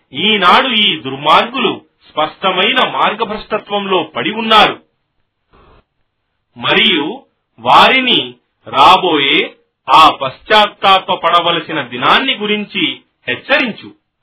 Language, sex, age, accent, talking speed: Telugu, male, 40-59, native, 70 wpm